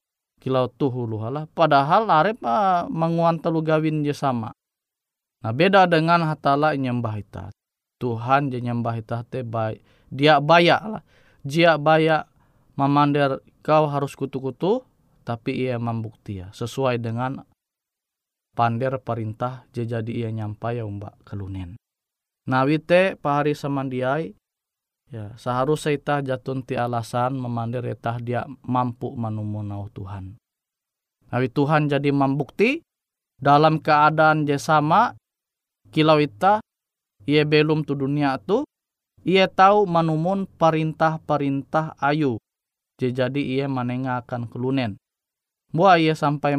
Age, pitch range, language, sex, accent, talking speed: 20-39, 120-155 Hz, Indonesian, male, native, 105 wpm